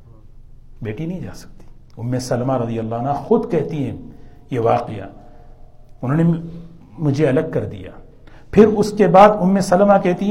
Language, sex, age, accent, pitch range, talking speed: Indonesian, male, 60-79, Indian, 120-170 Hz, 140 wpm